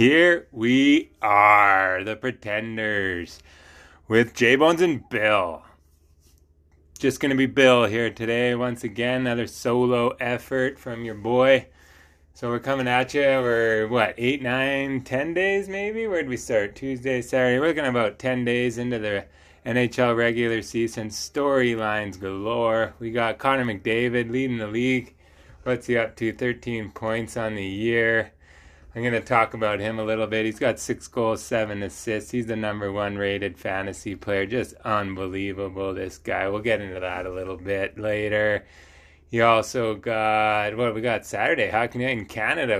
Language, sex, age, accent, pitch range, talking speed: English, male, 20-39, American, 100-125 Hz, 165 wpm